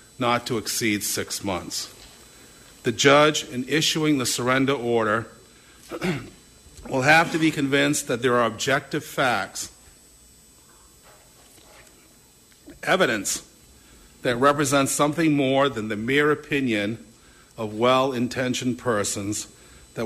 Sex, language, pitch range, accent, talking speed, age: male, English, 115-140 Hz, American, 105 wpm, 50-69